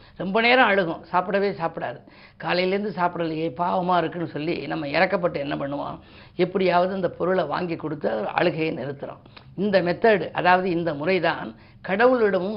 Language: Tamil